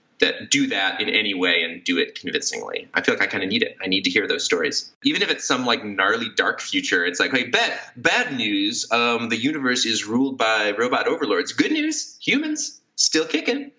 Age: 20-39